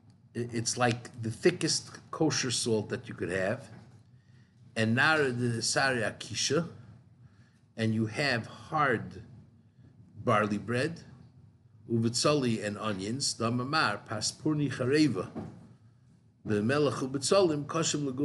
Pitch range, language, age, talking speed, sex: 115-130 Hz, English, 50-69, 60 wpm, male